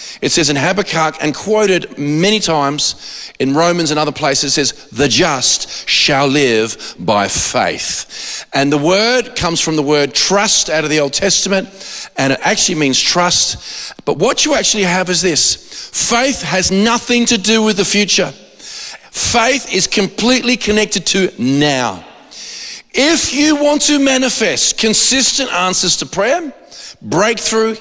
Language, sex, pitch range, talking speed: English, male, 160-220 Hz, 150 wpm